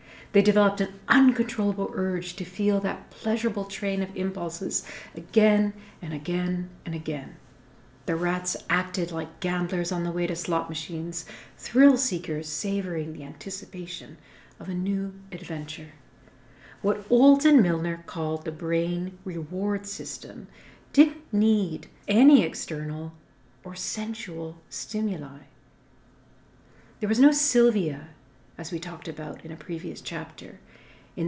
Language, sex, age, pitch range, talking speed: English, female, 40-59, 160-205 Hz, 125 wpm